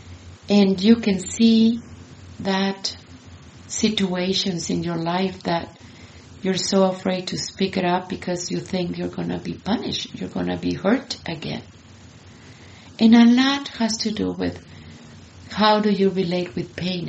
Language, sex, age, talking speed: English, female, 50-69, 155 wpm